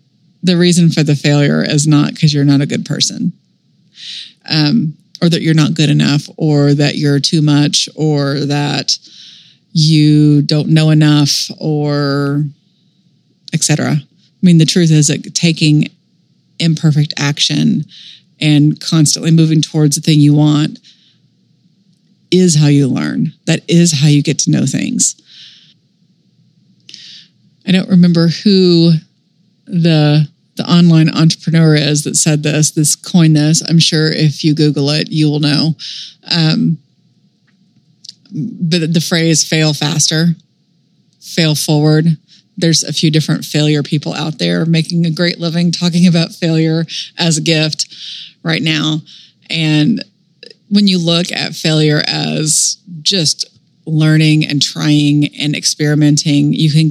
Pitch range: 150-170 Hz